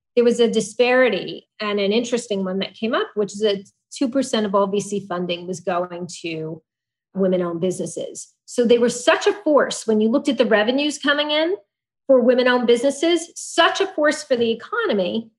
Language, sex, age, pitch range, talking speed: English, female, 30-49, 200-255 Hz, 190 wpm